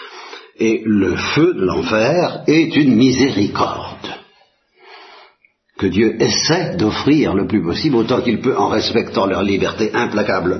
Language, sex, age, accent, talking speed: Italian, male, 60-79, French, 130 wpm